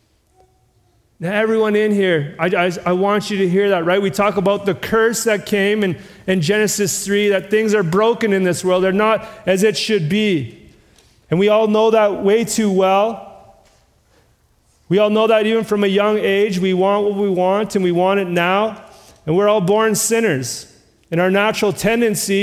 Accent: American